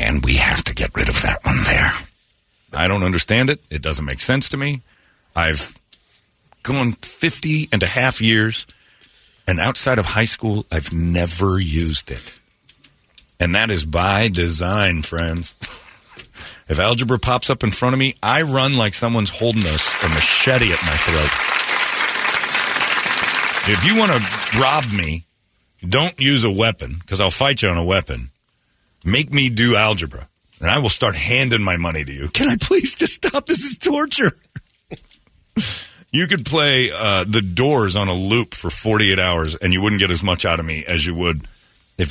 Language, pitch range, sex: English, 85-130 Hz, male